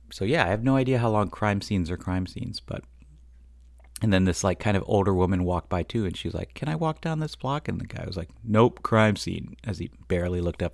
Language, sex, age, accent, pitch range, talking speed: English, male, 30-49, American, 85-105 Hz, 270 wpm